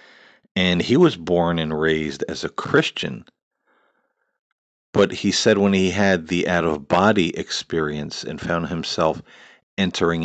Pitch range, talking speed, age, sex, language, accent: 80-90 Hz, 130 wpm, 40-59, male, English, American